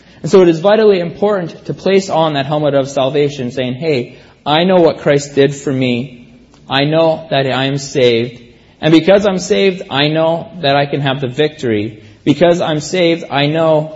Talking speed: 195 wpm